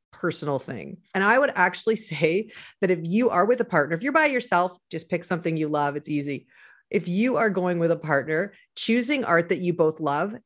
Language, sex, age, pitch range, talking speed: English, female, 40-59, 165-220 Hz, 220 wpm